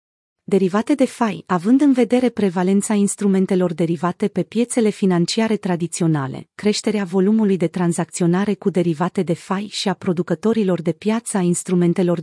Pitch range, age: 180-220 Hz, 30-49